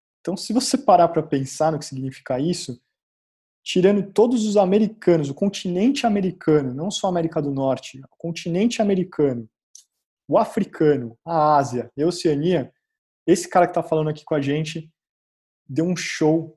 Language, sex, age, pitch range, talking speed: Portuguese, male, 20-39, 135-160 Hz, 160 wpm